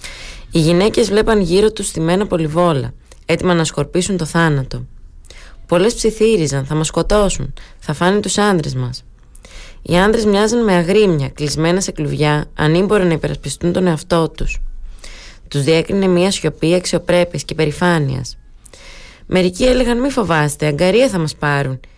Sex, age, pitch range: female, 20-39, 145-180 Hz